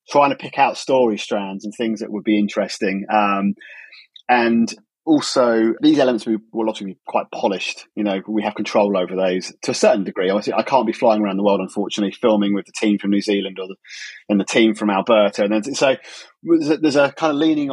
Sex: male